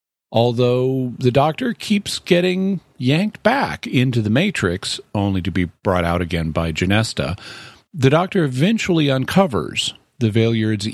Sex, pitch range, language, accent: male, 95-120 Hz, English, American